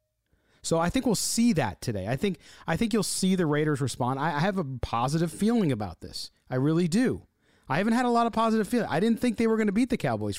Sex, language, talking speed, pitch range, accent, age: male, English, 260 wpm, 110-175 Hz, American, 40-59